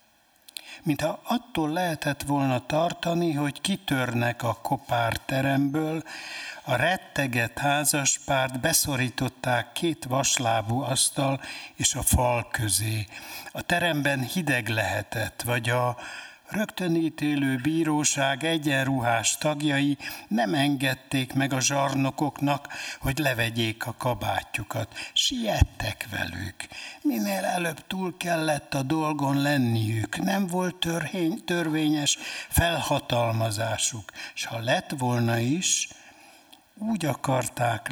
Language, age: Hungarian, 60-79